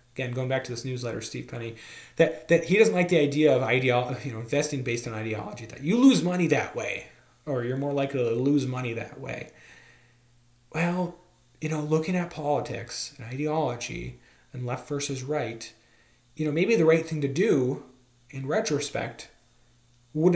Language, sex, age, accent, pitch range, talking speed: English, male, 30-49, American, 115-145 Hz, 180 wpm